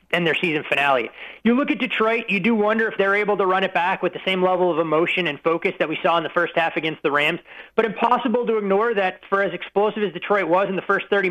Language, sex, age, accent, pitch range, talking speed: English, male, 30-49, American, 170-195 Hz, 270 wpm